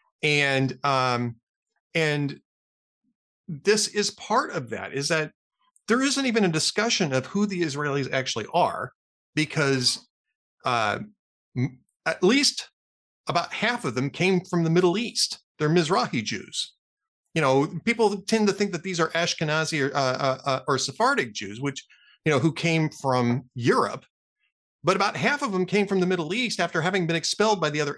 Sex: male